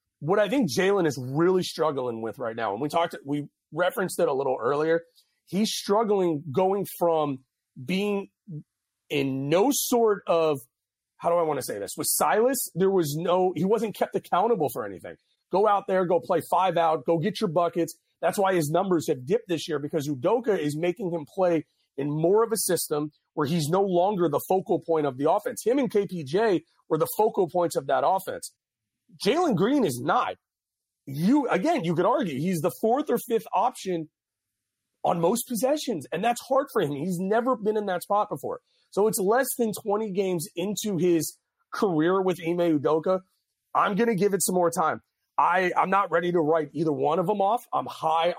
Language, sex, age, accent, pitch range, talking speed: English, male, 30-49, American, 160-210 Hz, 195 wpm